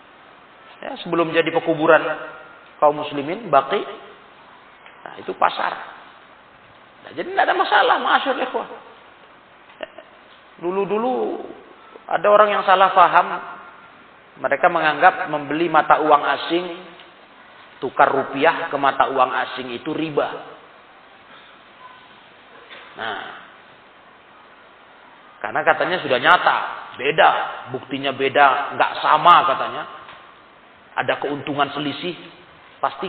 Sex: male